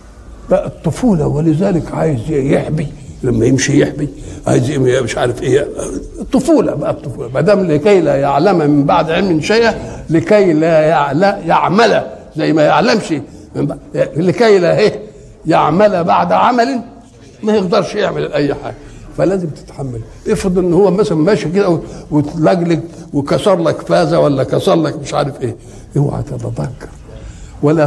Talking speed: 135 wpm